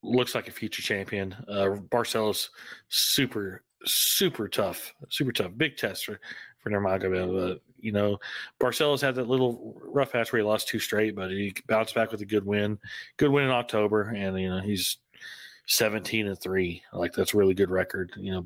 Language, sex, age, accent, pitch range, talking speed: English, male, 30-49, American, 100-120 Hz, 190 wpm